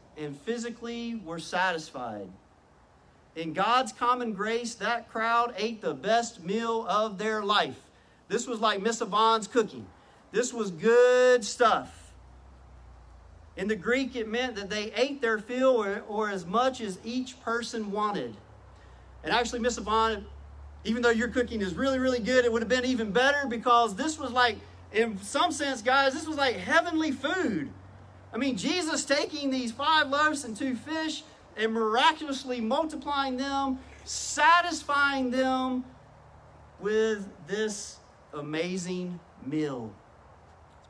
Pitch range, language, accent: 165-255 Hz, English, American